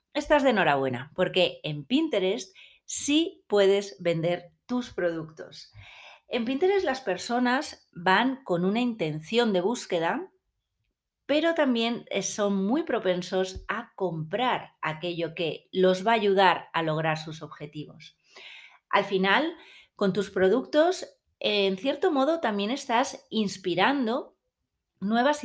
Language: Spanish